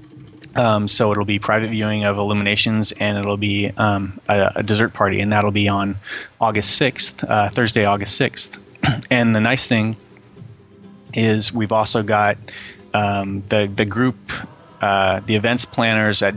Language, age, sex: English, 20-39, male